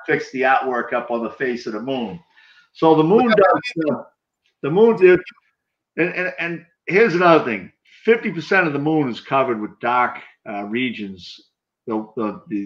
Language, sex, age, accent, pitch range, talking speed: English, male, 50-69, American, 110-140 Hz, 175 wpm